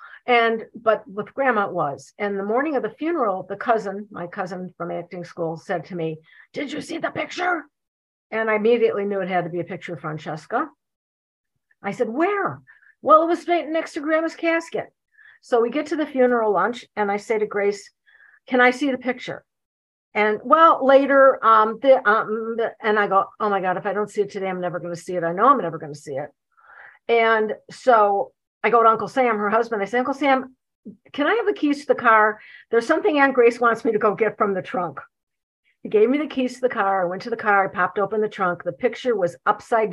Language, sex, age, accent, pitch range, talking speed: English, female, 50-69, American, 190-255 Hz, 230 wpm